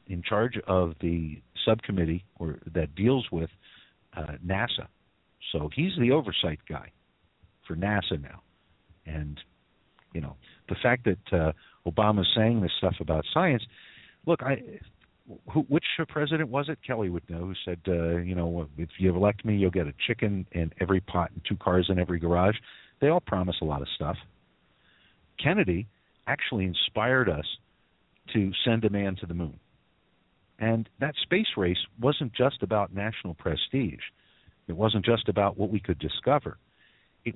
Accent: American